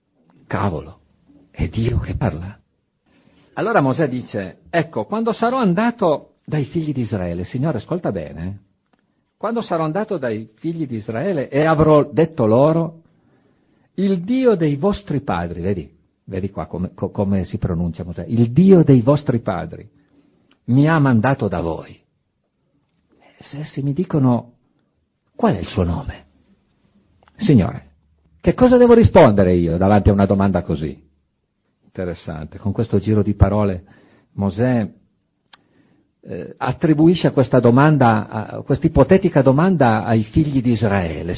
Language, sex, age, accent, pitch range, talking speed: Italian, male, 50-69, native, 95-160 Hz, 135 wpm